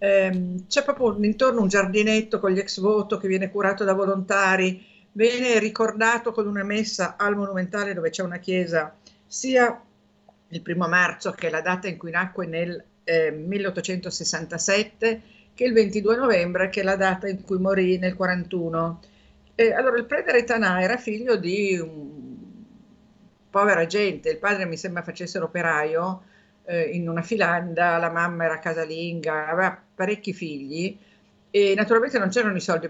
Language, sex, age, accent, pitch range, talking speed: Italian, female, 50-69, native, 175-215 Hz, 150 wpm